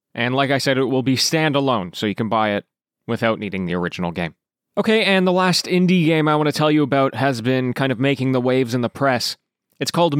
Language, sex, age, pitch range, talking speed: English, male, 20-39, 125-155 Hz, 245 wpm